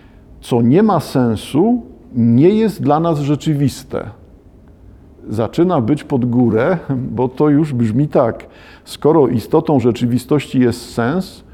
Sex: male